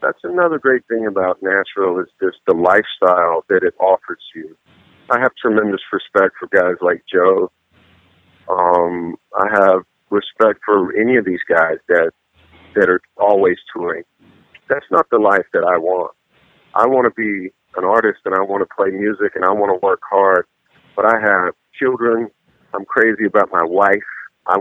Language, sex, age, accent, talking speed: English, male, 50-69, American, 175 wpm